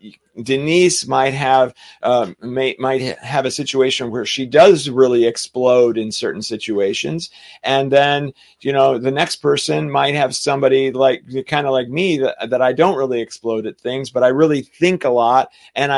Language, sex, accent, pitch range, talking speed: English, male, American, 125-160 Hz, 175 wpm